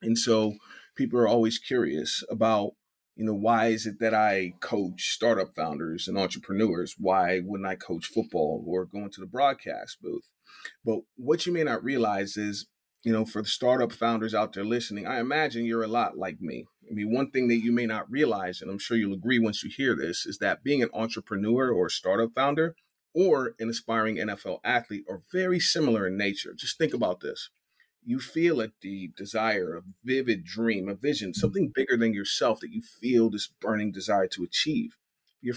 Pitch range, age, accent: 105-135 Hz, 30-49, American